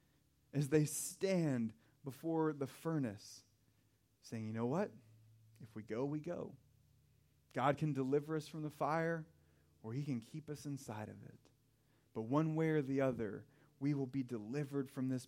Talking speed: 165 wpm